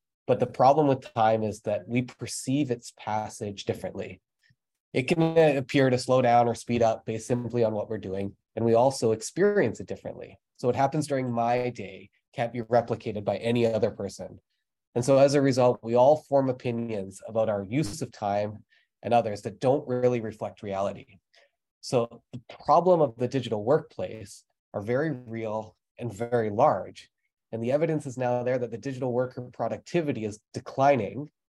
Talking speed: 175 wpm